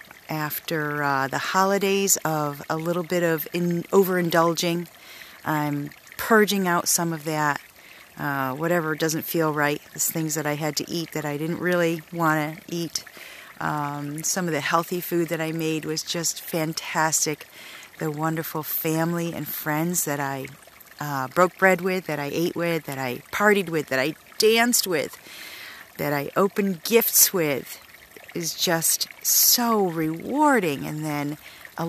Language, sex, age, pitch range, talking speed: English, female, 40-59, 145-170 Hz, 150 wpm